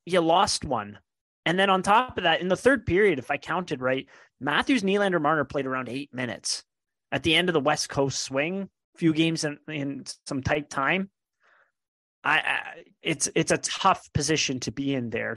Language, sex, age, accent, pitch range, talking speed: English, male, 30-49, American, 130-165 Hz, 195 wpm